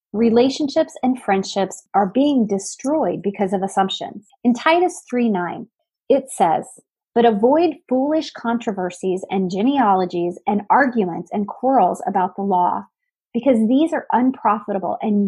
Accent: American